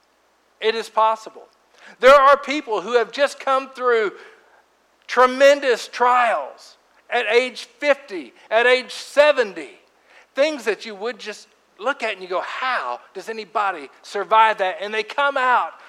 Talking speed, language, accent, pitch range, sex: 145 wpm, English, American, 165-245 Hz, male